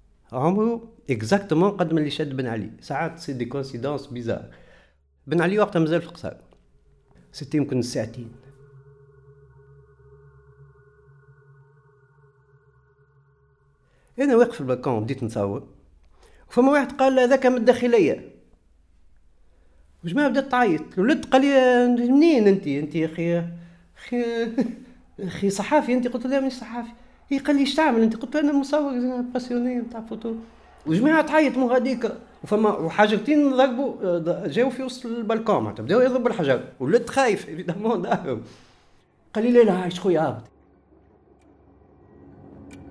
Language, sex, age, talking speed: French, male, 50-69, 115 wpm